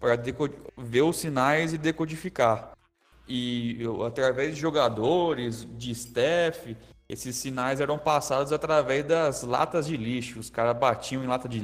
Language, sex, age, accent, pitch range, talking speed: Portuguese, male, 20-39, Brazilian, 115-145 Hz, 150 wpm